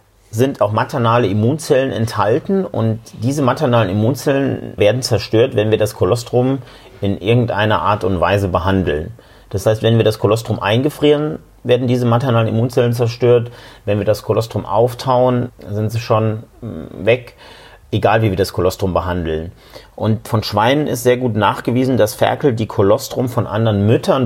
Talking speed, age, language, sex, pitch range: 155 wpm, 40-59, German, male, 105-125 Hz